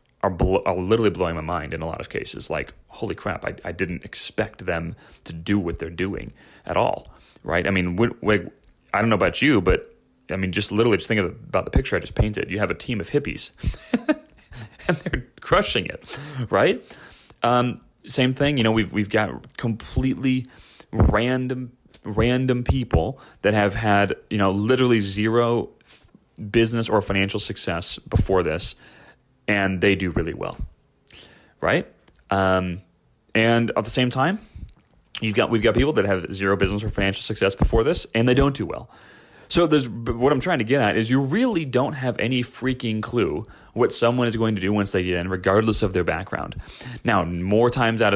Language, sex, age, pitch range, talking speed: English, male, 30-49, 95-125 Hz, 185 wpm